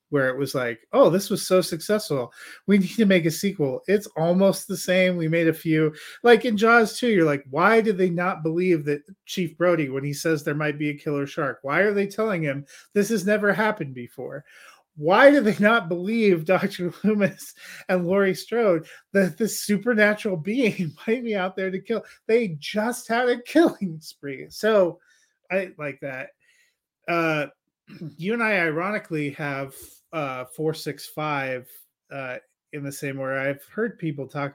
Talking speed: 180 wpm